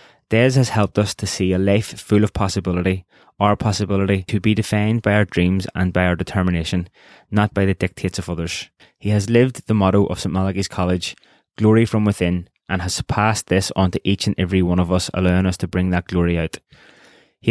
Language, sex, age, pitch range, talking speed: English, male, 20-39, 90-100 Hz, 210 wpm